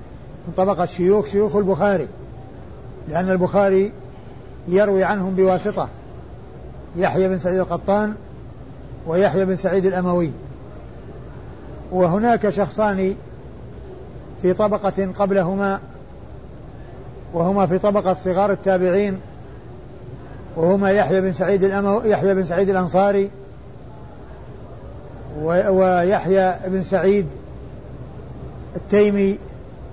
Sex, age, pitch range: male, 50-69, 180-200 Hz